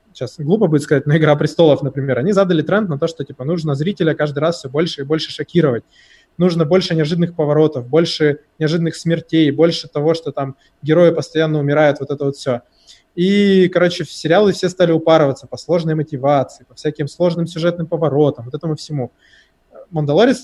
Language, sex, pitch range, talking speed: Russian, male, 140-170 Hz, 180 wpm